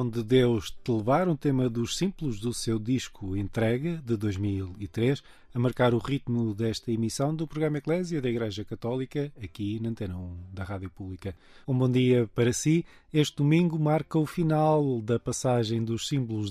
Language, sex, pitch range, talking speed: Portuguese, male, 100-135 Hz, 165 wpm